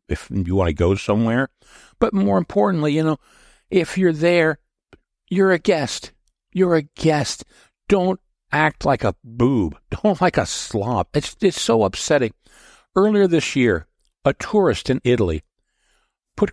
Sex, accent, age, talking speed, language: male, American, 60-79, 150 wpm, English